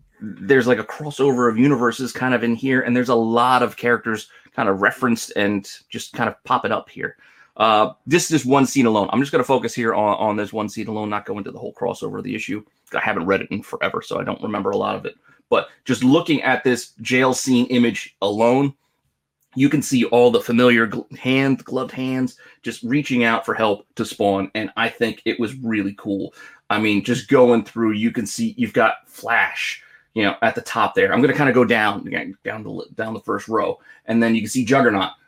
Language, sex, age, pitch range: English, male, 30-49, 110-140 Hz